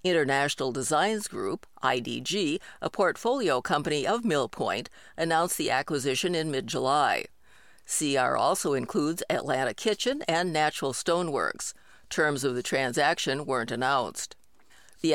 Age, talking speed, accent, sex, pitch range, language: 50-69, 115 wpm, American, female, 140-185 Hz, English